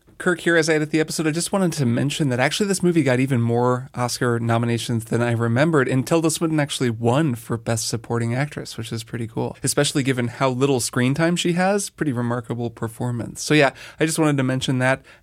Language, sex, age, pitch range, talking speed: English, male, 20-39, 125-160 Hz, 220 wpm